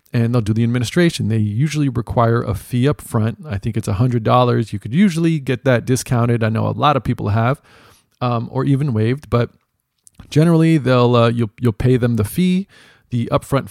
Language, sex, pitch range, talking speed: English, male, 115-140 Hz, 195 wpm